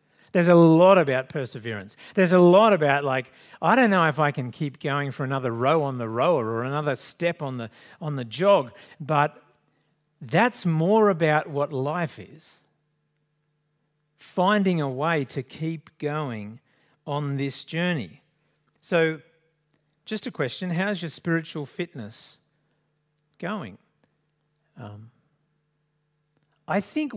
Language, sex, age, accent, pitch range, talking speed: English, male, 50-69, Australian, 130-160 Hz, 135 wpm